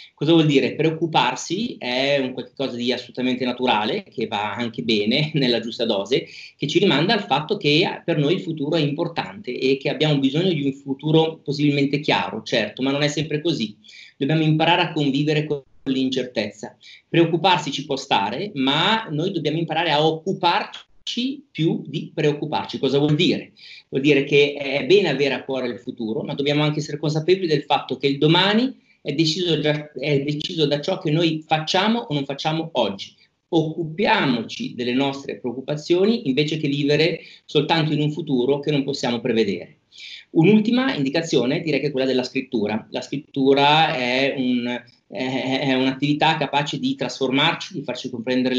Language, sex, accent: Italian, male, native